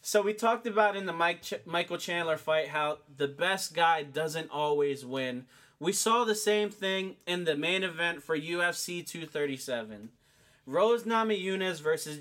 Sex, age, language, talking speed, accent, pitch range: male, 20-39, English, 150 wpm, American, 150-195 Hz